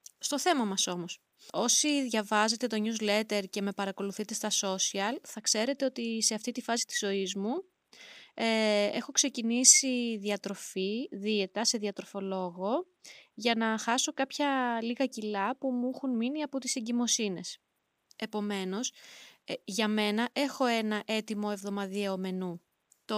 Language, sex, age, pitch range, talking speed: Greek, female, 20-39, 200-250 Hz, 135 wpm